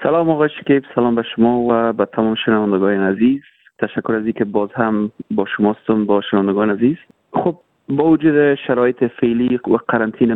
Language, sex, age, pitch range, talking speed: Persian, male, 30-49, 110-130 Hz, 160 wpm